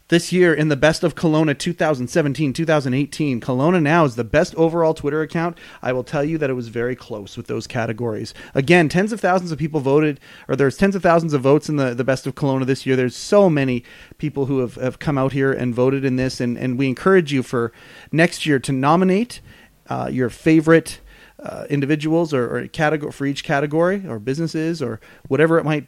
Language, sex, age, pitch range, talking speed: English, male, 30-49, 130-170 Hz, 210 wpm